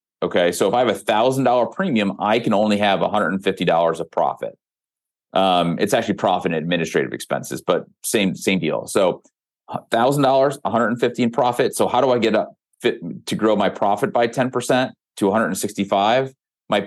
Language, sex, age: English, male, 30-49